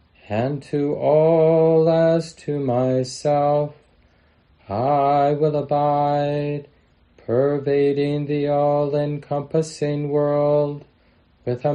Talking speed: 75 wpm